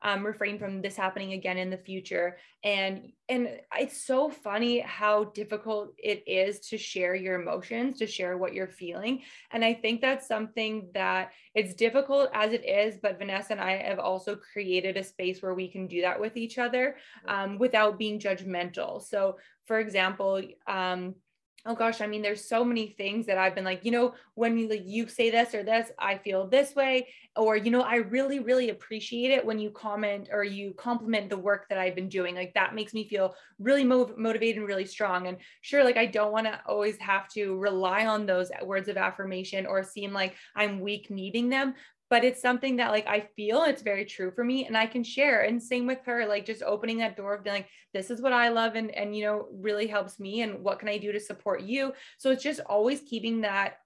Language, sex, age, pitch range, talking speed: English, female, 20-39, 195-230 Hz, 215 wpm